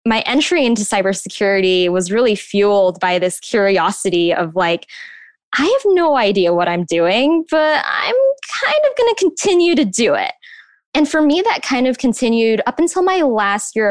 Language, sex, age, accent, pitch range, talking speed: English, female, 10-29, American, 190-270 Hz, 175 wpm